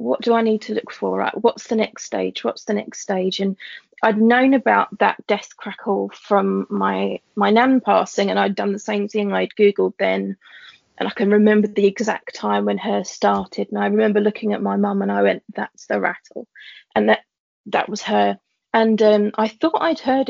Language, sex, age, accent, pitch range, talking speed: English, female, 30-49, British, 200-230 Hz, 205 wpm